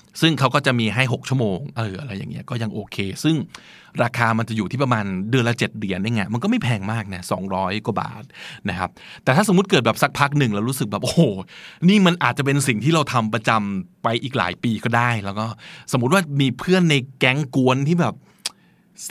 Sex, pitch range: male, 110-150 Hz